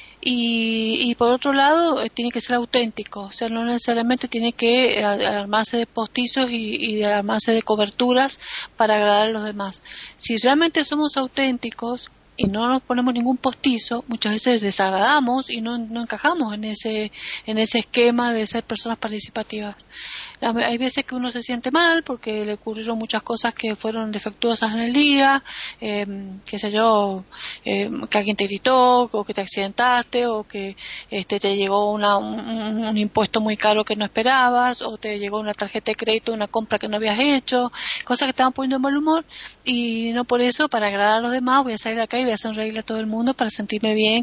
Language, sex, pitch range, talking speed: Spanish, female, 215-250 Hz, 200 wpm